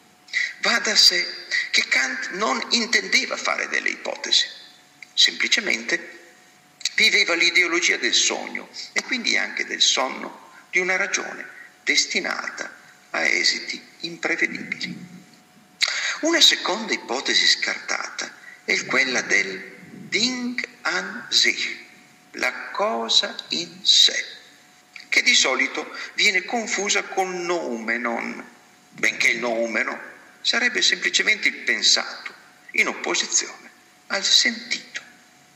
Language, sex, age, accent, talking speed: Italian, male, 50-69, native, 100 wpm